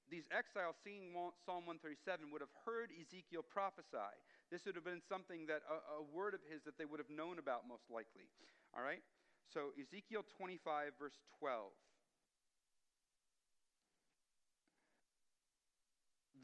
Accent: American